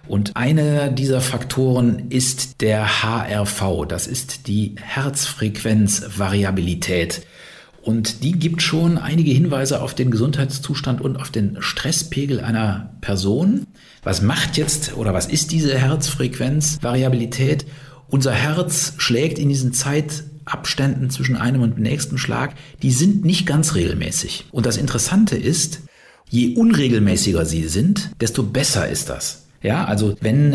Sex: male